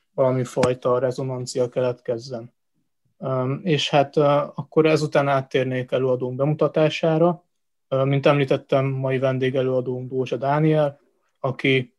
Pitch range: 130-145 Hz